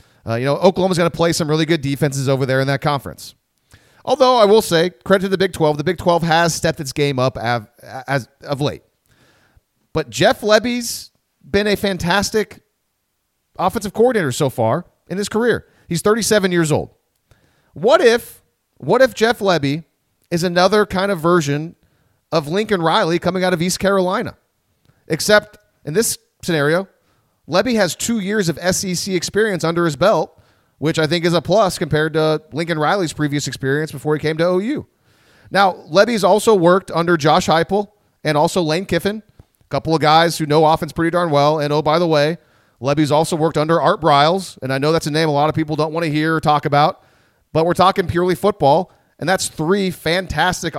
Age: 40-59